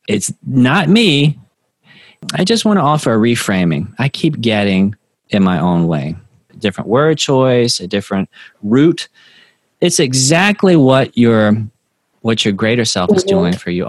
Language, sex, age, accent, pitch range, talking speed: English, male, 30-49, American, 100-150 Hz, 155 wpm